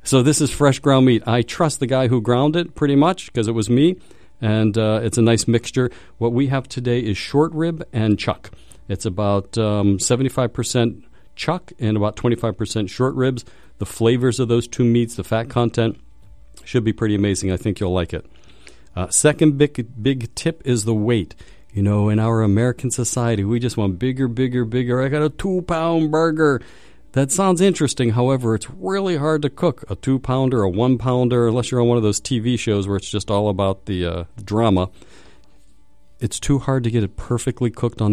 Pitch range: 100-130 Hz